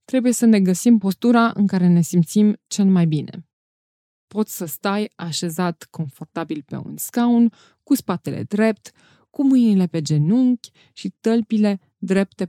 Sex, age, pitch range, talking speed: female, 20-39, 175-230 Hz, 145 wpm